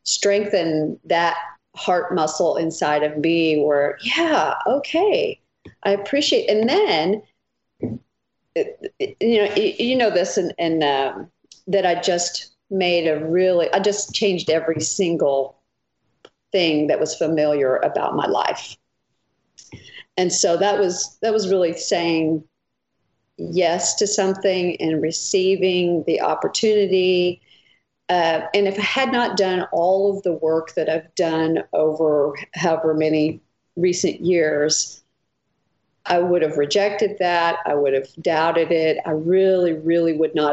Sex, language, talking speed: female, English, 135 wpm